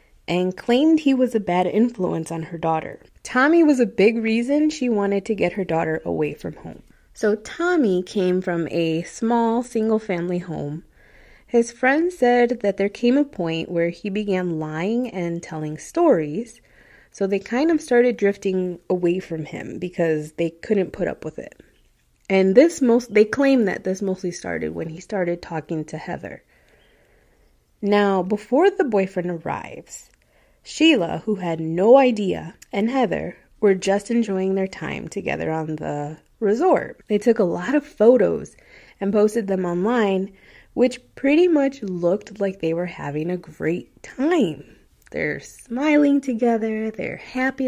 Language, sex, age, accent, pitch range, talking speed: English, female, 20-39, American, 175-245 Hz, 160 wpm